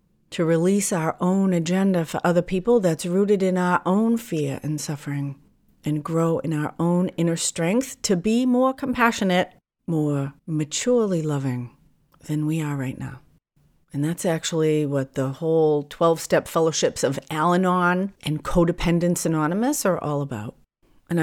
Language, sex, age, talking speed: English, female, 40-59, 155 wpm